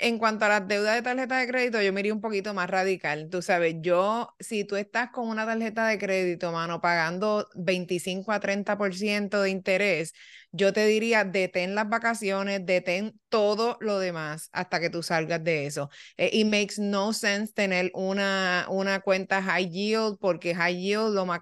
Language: Spanish